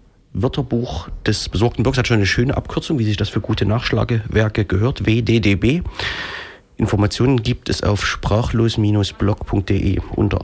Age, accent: 40-59, German